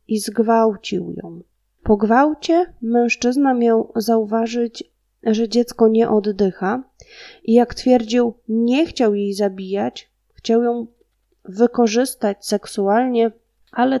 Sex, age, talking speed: female, 20-39, 105 wpm